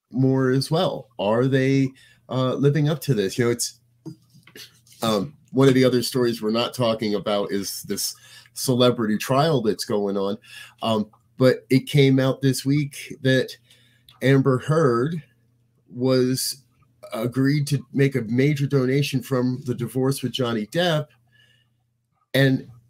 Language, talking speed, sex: English, 140 wpm, male